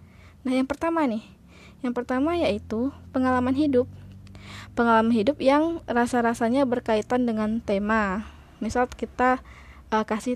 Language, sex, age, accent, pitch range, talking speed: Indonesian, female, 20-39, native, 205-255 Hz, 115 wpm